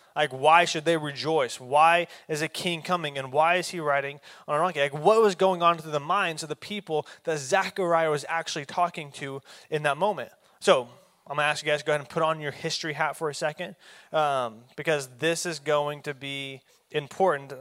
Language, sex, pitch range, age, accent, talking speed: English, male, 155-200 Hz, 20-39, American, 220 wpm